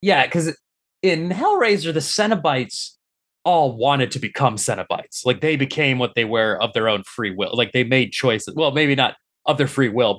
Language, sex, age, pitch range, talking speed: English, male, 20-39, 105-140 Hz, 195 wpm